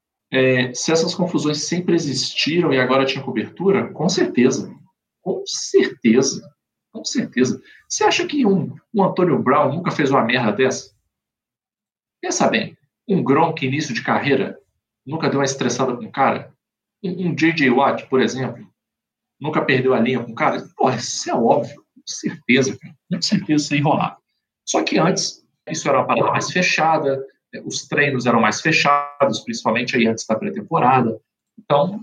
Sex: male